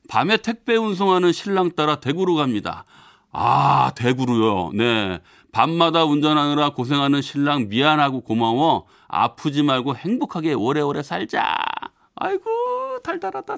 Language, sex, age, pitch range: Korean, male, 40-59, 105-165 Hz